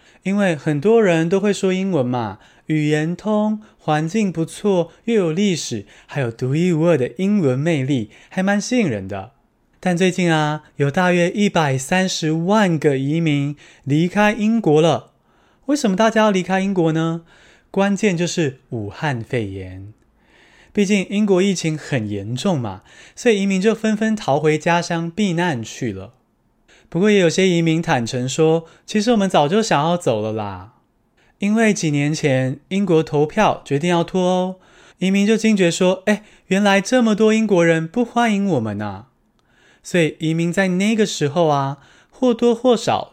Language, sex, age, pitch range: Chinese, male, 20-39, 130-195 Hz